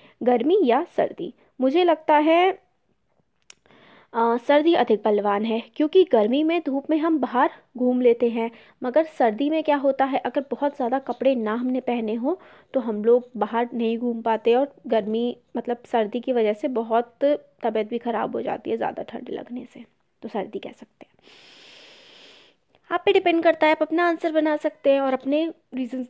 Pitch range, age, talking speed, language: 220-285 Hz, 20-39, 185 wpm, Hindi